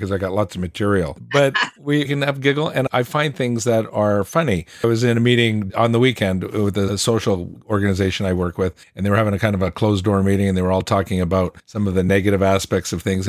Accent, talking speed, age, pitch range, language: American, 255 wpm, 50-69, 95-115 Hz, English